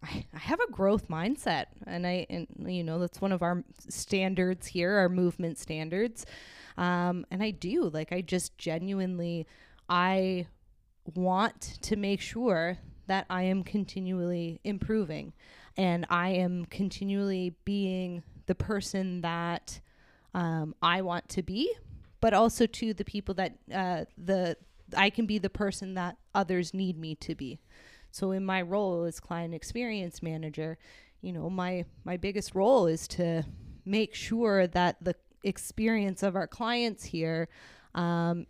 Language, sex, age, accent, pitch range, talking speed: English, female, 20-39, American, 170-195 Hz, 145 wpm